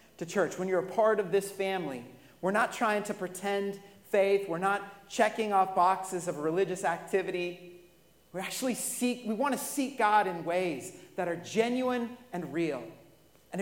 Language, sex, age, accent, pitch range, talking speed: English, male, 40-59, American, 190-255 Hz, 170 wpm